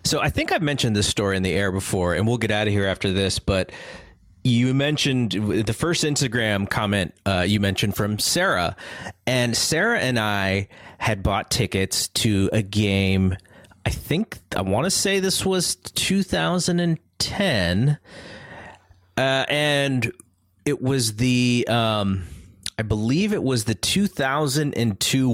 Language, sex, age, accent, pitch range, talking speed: English, male, 30-49, American, 100-135 Hz, 145 wpm